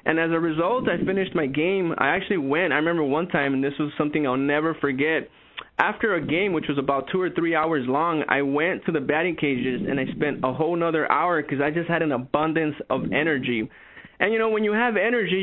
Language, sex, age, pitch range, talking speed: English, male, 20-39, 150-185 Hz, 235 wpm